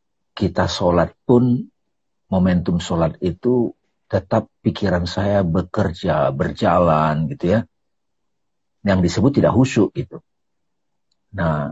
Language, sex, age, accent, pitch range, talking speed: Indonesian, male, 50-69, native, 85-115 Hz, 95 wpm